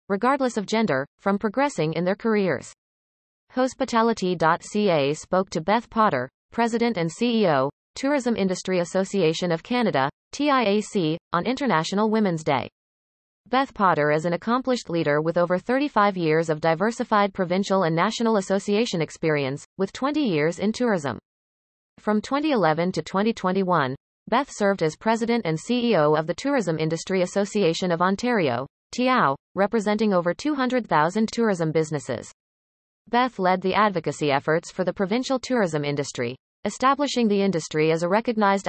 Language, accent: English, American